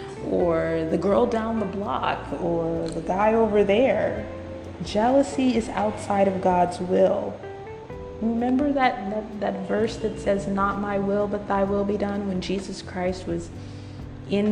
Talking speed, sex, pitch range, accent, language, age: 150 wpm, female, 180-220 Hz, American, English, 30-49